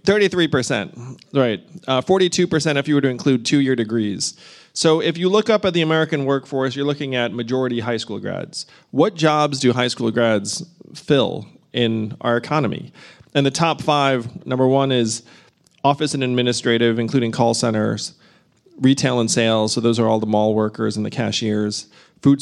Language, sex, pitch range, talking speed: English, male, 115-150 Hz, 170 wpm